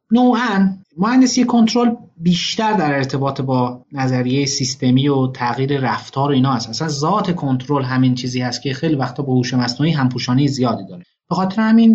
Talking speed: 165 wpm